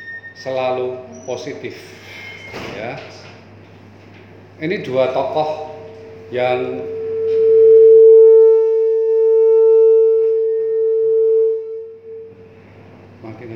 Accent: native